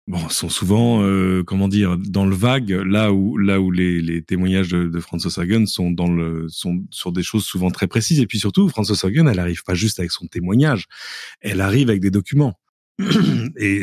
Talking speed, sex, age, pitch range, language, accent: 210 wpm, male, 30-49, 90-115 Hz, French, French